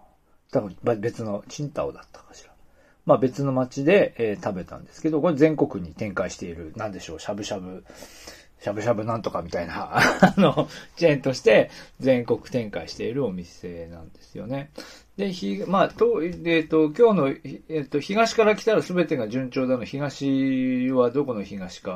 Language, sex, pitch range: Japanese, male, 115-170 Hz